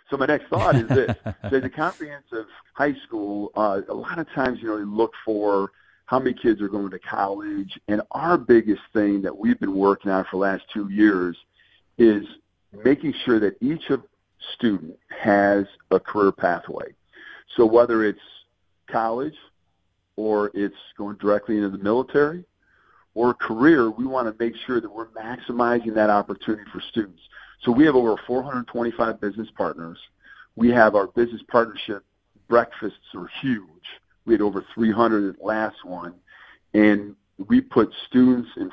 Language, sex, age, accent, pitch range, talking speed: English, male, 50-69, American, 105-120 Hz, 165 wpm